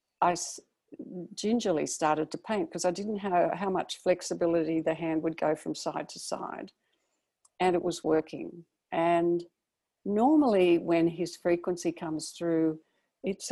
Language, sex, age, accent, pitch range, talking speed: English, female, 60-79, Australian, 160-180 Hz, 140 wpm